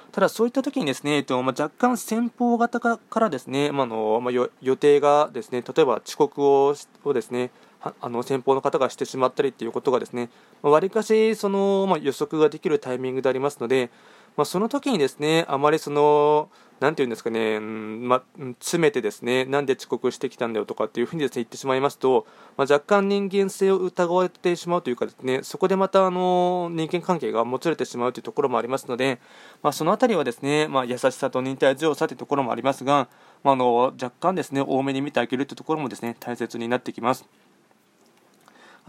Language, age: Japanese, 20-39